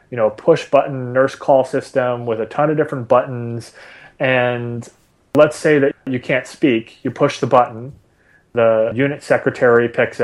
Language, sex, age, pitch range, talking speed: English, male, 30-49, 115-140 Hz, 165 wpm